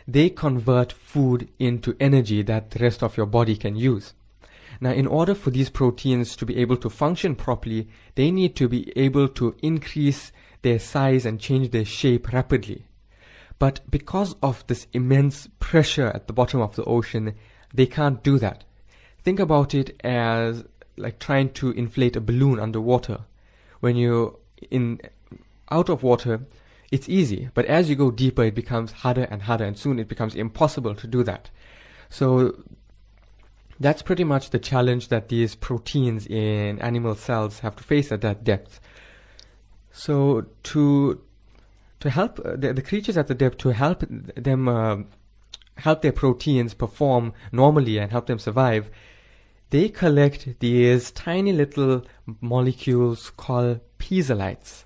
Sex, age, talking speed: male, 20-39, 155 wpm